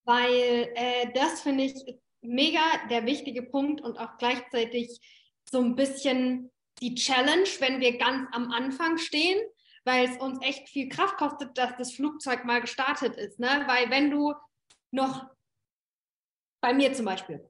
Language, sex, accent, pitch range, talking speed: German, female, German, 245-315 Hz, 155 wpm